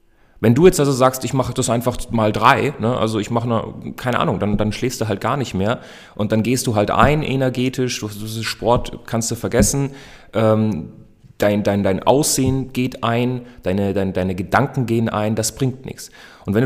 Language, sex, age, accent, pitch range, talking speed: German, male, 30-49, German, 105-130 Hz, 205 wpm